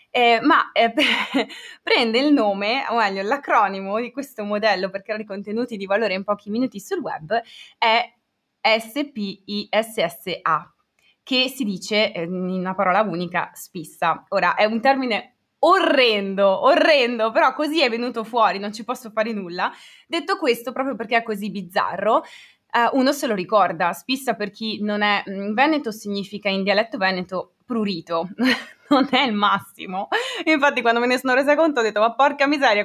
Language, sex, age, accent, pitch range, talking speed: Italian, female, 20-39, native, 200-260 Hz, 160 wpm